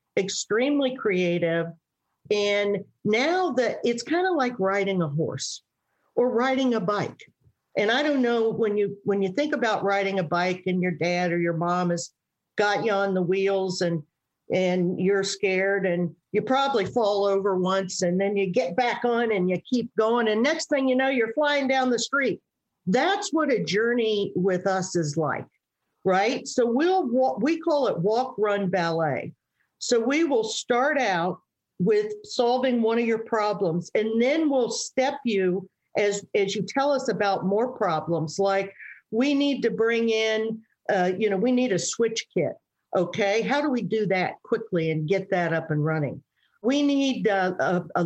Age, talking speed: 50-69, 180 wpm